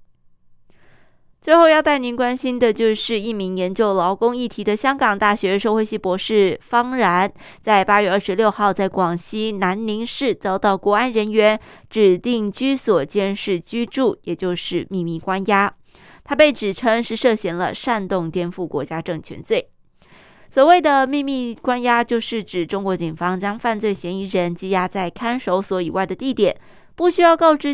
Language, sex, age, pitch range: Chinese, female, 20-39, 185-240 Hz